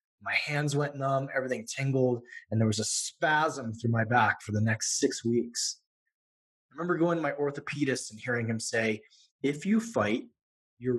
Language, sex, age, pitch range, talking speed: English, male, 20-39, 115-155 Hz, 180 wpm